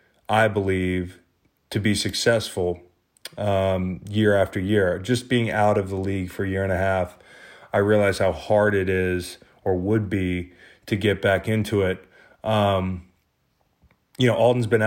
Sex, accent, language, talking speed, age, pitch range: male, American, English, 160 wpm, 30-49, 90-105 Hz